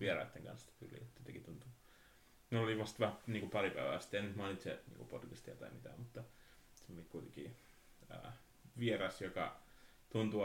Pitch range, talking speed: 95-120 Hz, 170 wpm